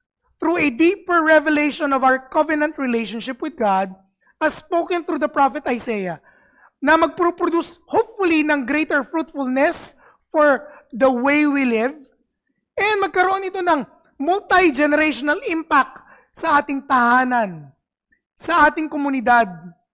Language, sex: English, male